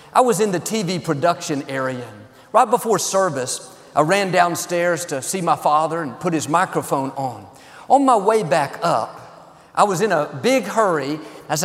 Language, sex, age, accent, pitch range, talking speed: English, male, 50-69, American, 160-230 Hz, 175 wpm